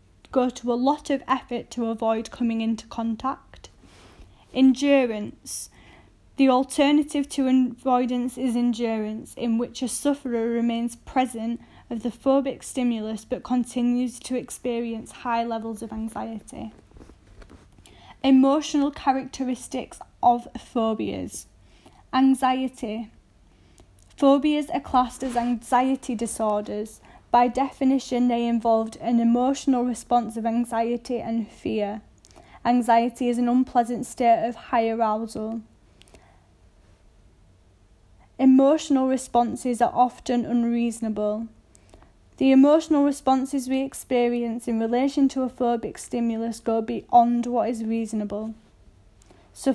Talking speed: 105 wpm